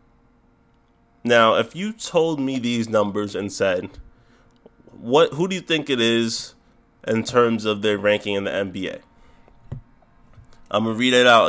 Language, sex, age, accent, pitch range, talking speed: English, male, 20-39, American, 110-125 Hz, 155 wpm